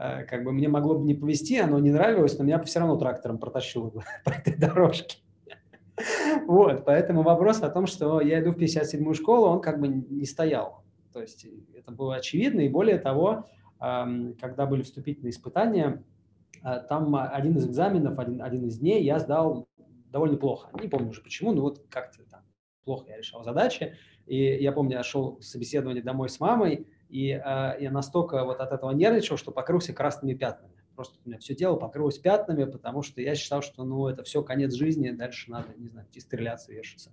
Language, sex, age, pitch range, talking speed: Russian, male, 20-39, 125-160 Hz, 185 wpm